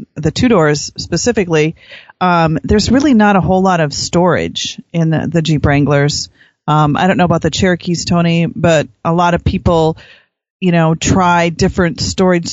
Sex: female